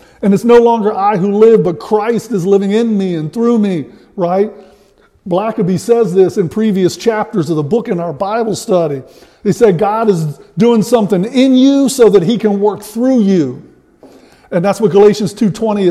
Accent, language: American, English